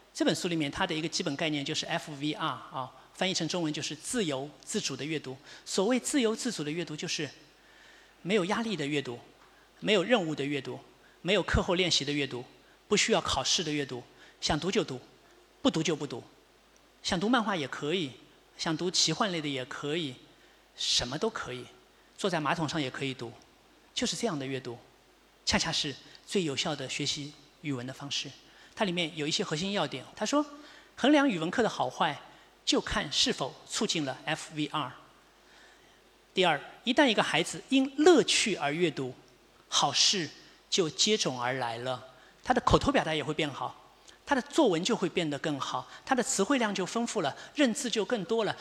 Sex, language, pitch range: male, Chinese, 145-225 Hz